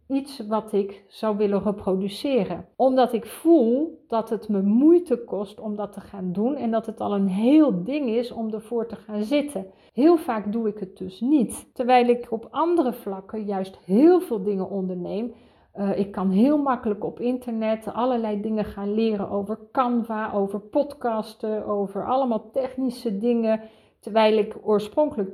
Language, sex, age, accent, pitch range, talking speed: Dutch, female, 50-69, Dutch, 200-245 Hz, 170 wpm